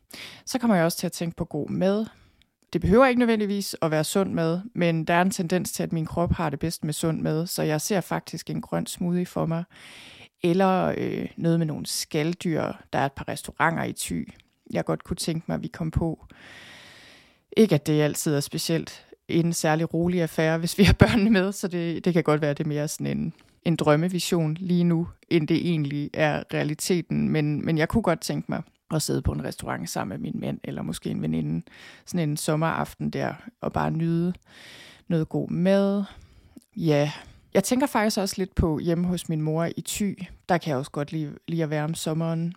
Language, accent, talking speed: Danish, native, 220 wpm